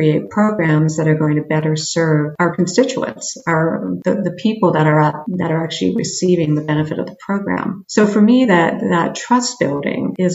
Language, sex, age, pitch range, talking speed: English, female, 50-69, 155-180 Hz, 190 wpm